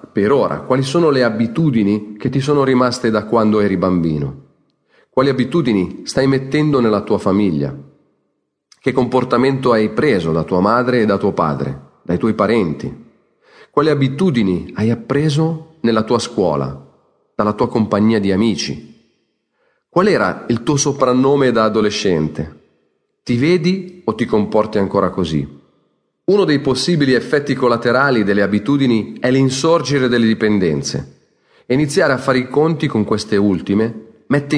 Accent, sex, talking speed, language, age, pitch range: native, male, 140 wpm, Italian, 40-59, 100-135 Hz